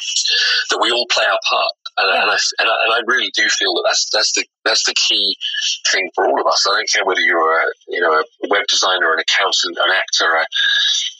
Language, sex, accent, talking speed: English, male, British, 235 wpm